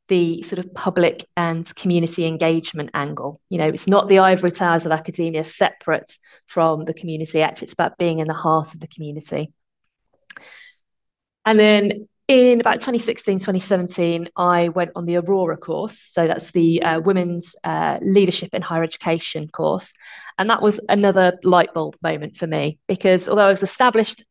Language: English